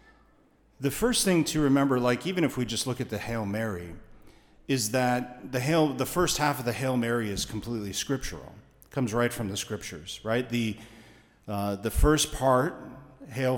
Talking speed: 185 wpm